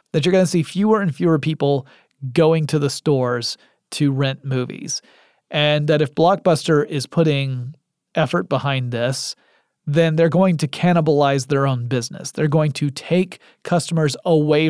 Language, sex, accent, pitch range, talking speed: English, male, American, 135-165 Hz, 160 wpm